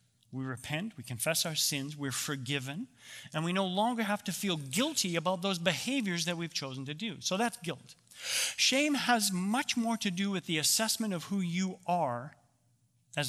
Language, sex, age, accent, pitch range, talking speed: English, male, 40-59, American, 120-175 Hz, 185 wpm